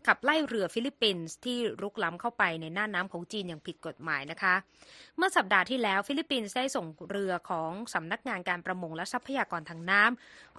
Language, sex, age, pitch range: Thai, female, 20-39, 180-245 Hz